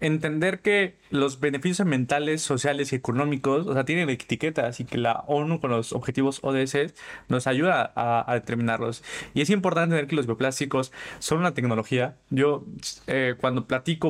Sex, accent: male, Mexican